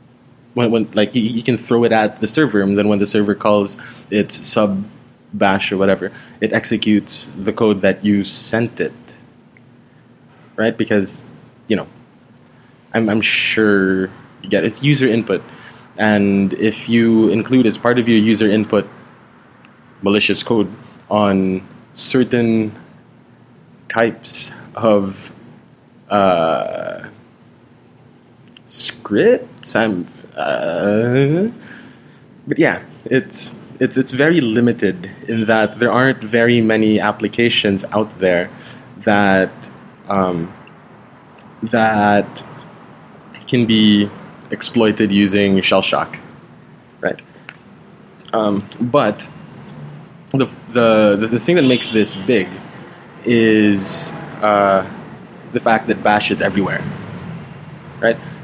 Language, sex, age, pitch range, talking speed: English, male, 20-39, 100-120 Hz, 110 wpm